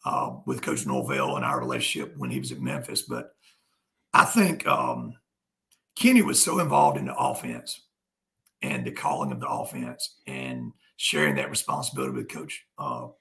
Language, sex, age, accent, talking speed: English, male, 50-69, American, 165 wpm